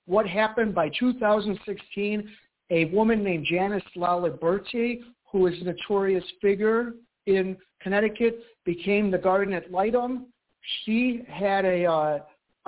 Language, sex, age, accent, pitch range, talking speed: English, male, 50-69, American, 180-230 Hz, 120 wpm